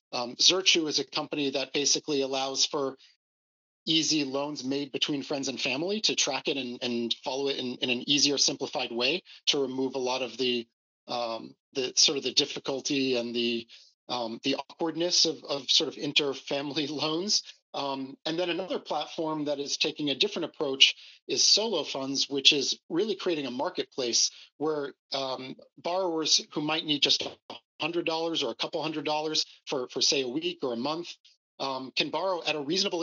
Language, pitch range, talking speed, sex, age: English, 130-155 Hz, 180 wpm, male, 40-59